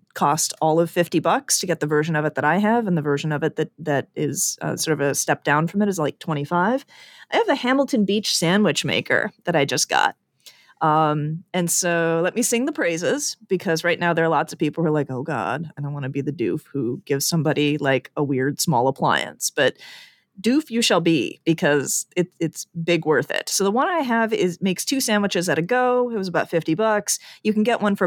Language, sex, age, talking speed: English, female, 30-49, 240 wpm